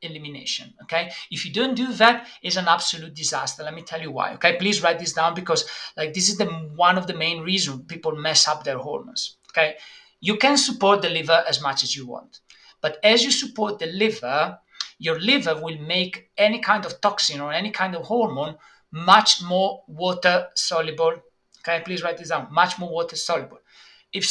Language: English